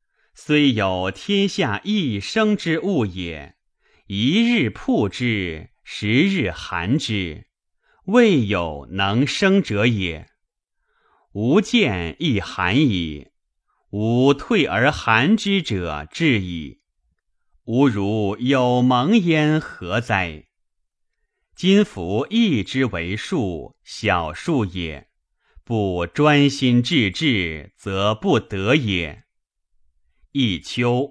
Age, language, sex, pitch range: 30-49, Chinese, male, 90-150 Hz